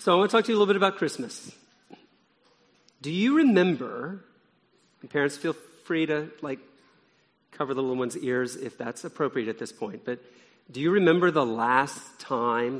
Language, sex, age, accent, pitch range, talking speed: English, male, 40-59, American, 130-190 Hz, 185 wpm